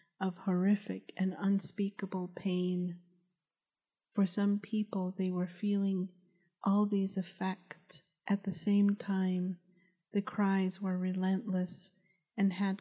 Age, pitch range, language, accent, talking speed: 40-59, 185-200 Hz, English, American, 110 wpm